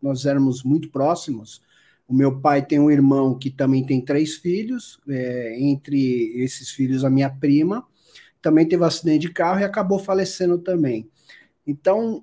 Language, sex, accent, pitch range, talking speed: Portuguese, male, Brazilian, 140-190 Hz, 160 wpm